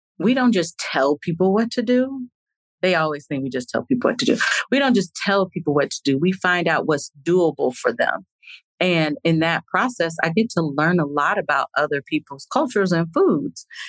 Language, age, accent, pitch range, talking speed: English, 40-59, American, 155-200 Hz, 210 wpm